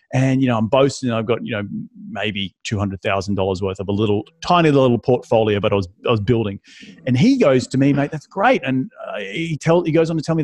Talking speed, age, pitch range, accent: 240 wpm, 30-49, 120-165 Hz, Australian